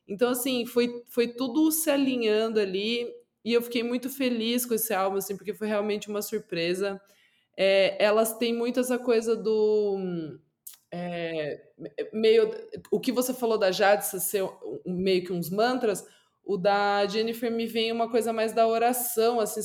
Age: 20-39